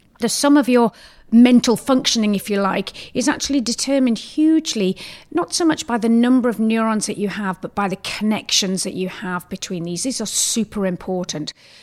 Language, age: English, 40-59